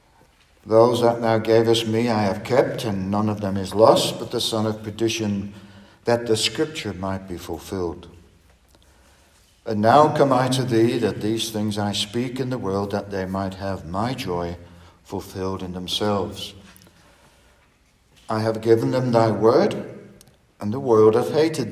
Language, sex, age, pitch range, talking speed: English, male, 60-79, 95-115 Hz, 165 wpm